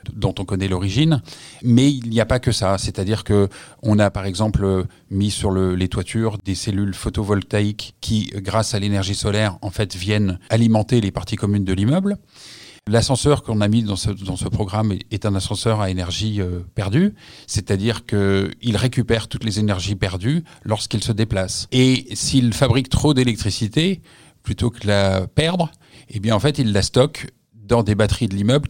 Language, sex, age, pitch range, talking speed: French, male, 40-59, 100-125 Hz, 180 wpm